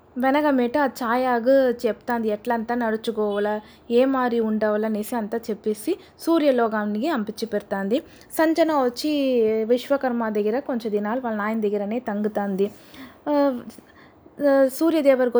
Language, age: Telugu, 20-39